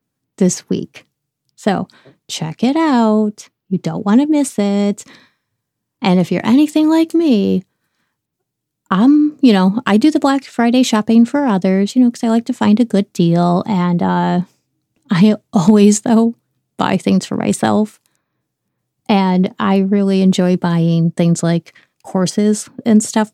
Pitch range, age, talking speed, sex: 180-225 Hz, 30-49, 150 wpm, female